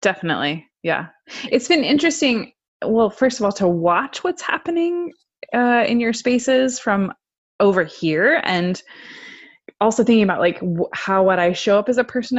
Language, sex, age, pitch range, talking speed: English, female, 20-39, 175-250 Hz, 160 wpm